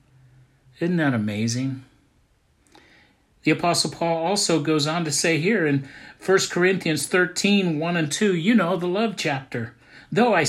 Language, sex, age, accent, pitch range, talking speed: English, male, 50-69, American, 130-175 Hz, 150 wpm